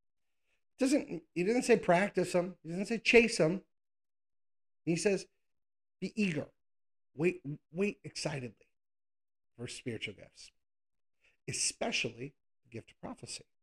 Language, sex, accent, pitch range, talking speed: English, male, American, 125-170 Hz, 115 wpm